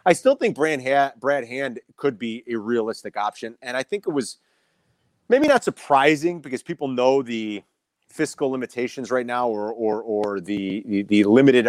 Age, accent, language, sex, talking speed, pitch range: 30-49, American, English, male, 165 wpm, 110-145 Hz